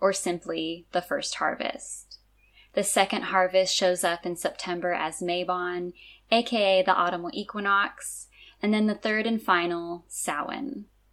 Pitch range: 175-200 Hz